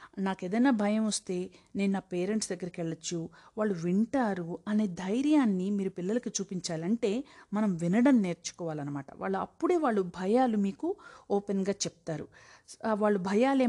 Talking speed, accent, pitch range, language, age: 120 wpm, native, 190-260 Hz, Telugu, 50-69